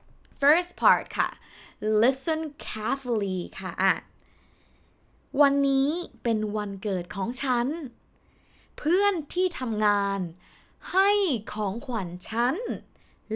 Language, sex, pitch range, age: Thai, female, 200-275 Hz, 20-39